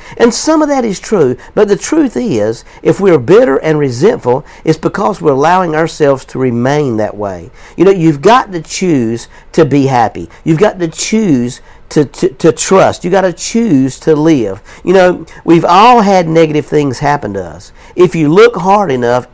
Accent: American